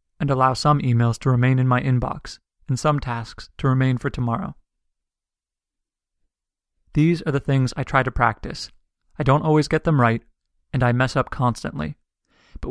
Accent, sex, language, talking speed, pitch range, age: American, male, English, 170 wpm, 105-140 Hz, 30-49